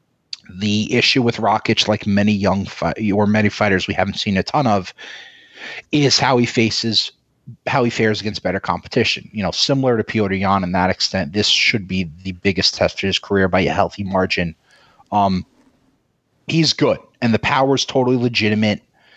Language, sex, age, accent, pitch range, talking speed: English, male, 30-49, American, 95-125 Hz, 180 wpm